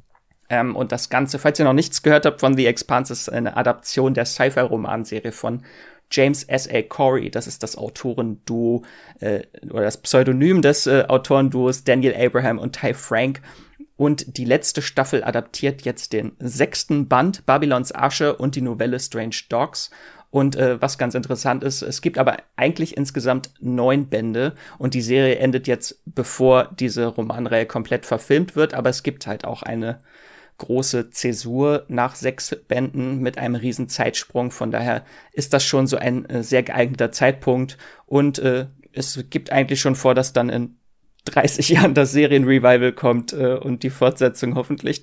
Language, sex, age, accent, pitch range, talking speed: German, male, 30-49, German, 125-140 Hz, 165 wpm